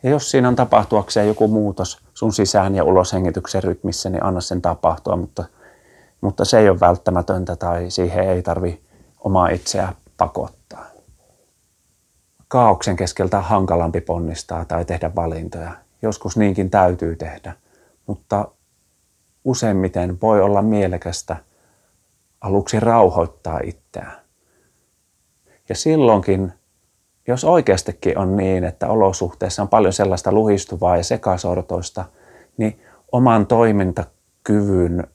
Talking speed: 115 wpm